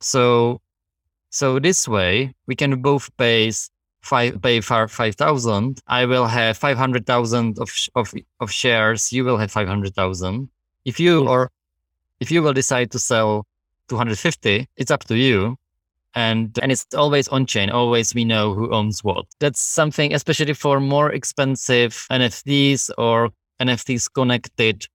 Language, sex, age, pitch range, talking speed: English, male, 20-39, 105-130 Hz, 145 wpm